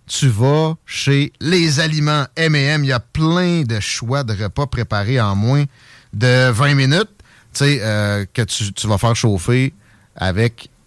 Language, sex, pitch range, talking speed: French, male, 115-150 Hz, 155 wpm